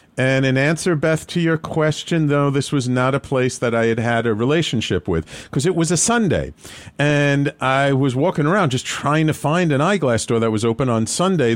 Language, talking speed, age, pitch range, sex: English, 220 wpm, 50-69, 95-140 Hz, male